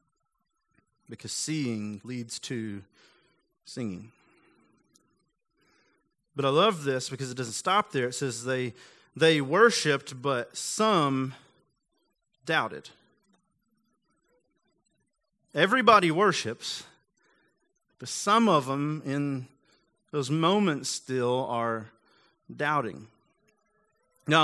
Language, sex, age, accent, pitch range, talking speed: English, male, 30-49, American, 125-180 Hz, 85 wpm